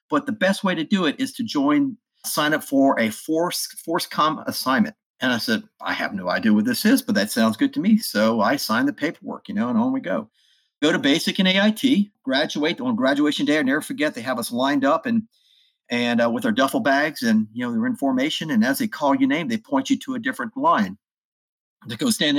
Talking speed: 245 wpm